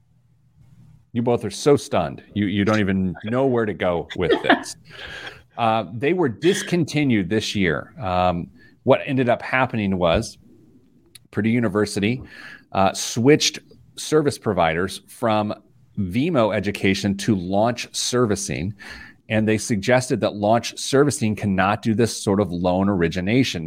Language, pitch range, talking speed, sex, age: English, 100-125 Hz, 130 wpm, male, 40-59